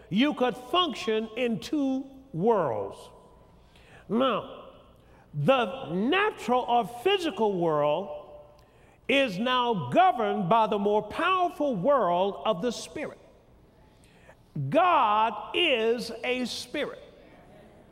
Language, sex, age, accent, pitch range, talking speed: English, male, 50-69, American, 200-285 Hz, 90 wpm